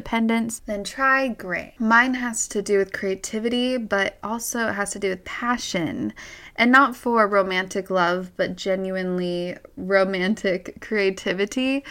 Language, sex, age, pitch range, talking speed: English, female, 20-39, 190-225 Hz, 135 wpm